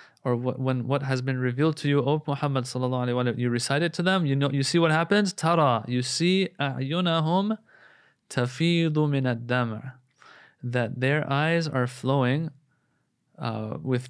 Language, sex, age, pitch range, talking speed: English, male, 20-39, 120-145 Hz, 150 wpm